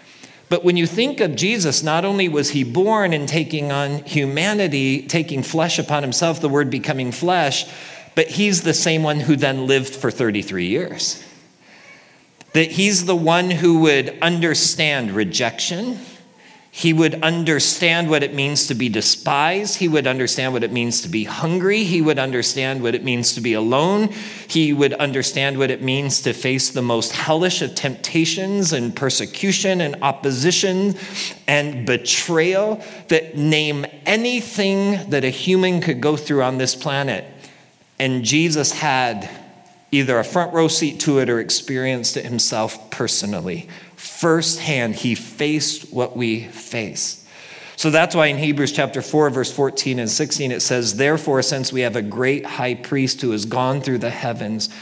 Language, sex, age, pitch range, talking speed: English, male, 40-59, 130-170 Hz, 160 wpm